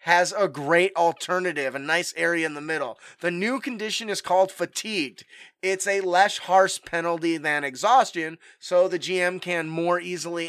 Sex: male